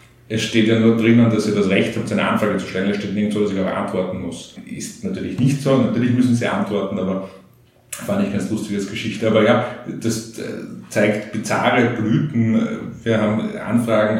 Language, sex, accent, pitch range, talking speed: German, male, Austrian, 100-115 Hz, 200 wpm